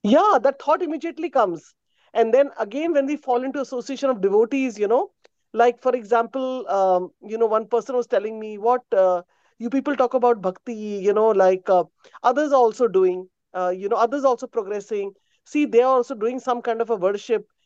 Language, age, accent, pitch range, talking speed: English, 40-59, Indian, 200-250 Hz, 200 wpm